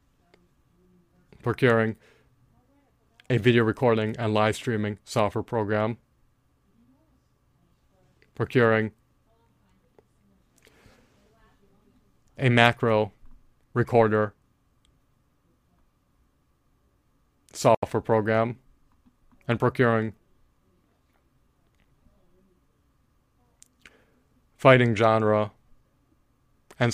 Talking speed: 45 wpm